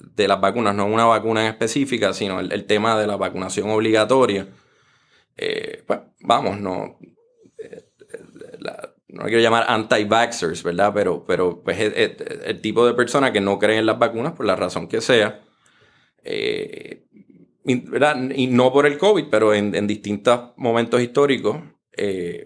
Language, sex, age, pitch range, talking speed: Spanish, male, 20-39, 100-145 Hz, 165 wpm